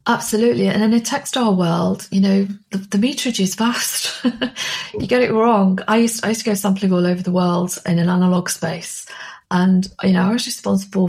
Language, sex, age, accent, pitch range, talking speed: English, female, 40-59, British, 190-230 Hz, 205 wpm